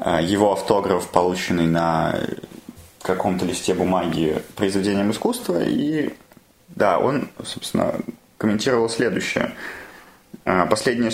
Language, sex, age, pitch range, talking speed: Russian, male, 20-39, 100-120 Hz, 85 wpm